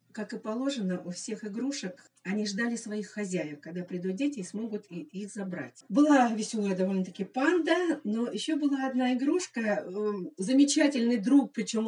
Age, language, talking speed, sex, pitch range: 50-69, Russian, 145 wpm, female, 195-255 Hz